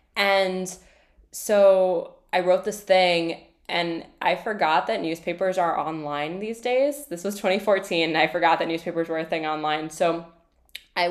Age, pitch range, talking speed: 10-29, 160-185 Hz, 155 wpm